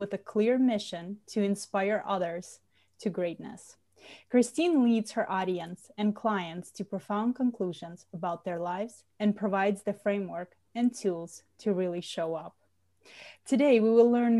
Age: 20-39